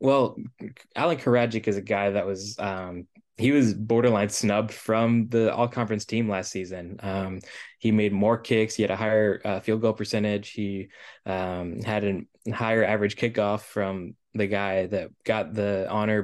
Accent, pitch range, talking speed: American, 100-115 Hz, 175 wpm